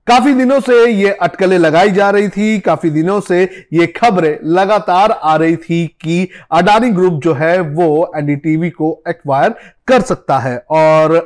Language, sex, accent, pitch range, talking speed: Hindi, male, native, 165-210 Hz, 165 wpm